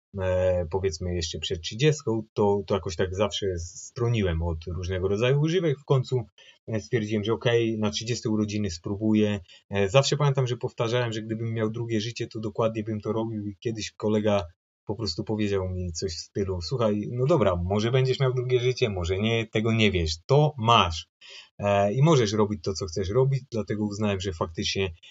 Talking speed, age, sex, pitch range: 175 wpm, 30-49, male, 100-135 Hz